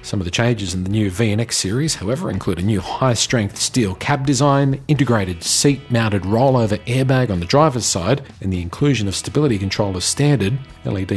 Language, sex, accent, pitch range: English, male, Australian, 100-135 Hz